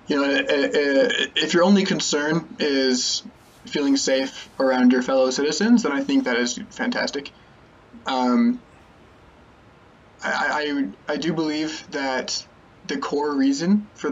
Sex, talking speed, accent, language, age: male, 130 wpm, American, English, 20-39